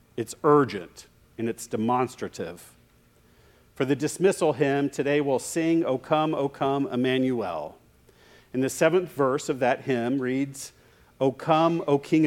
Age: 50-69